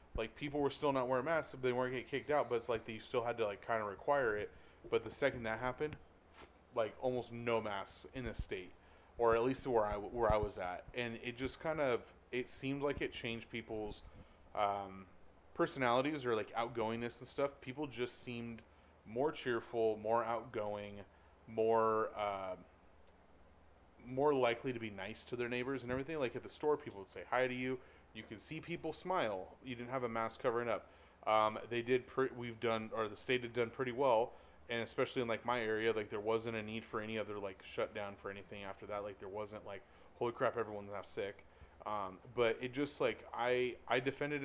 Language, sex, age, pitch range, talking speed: English, male, 30-49, 105-130 Hz, 210 wpm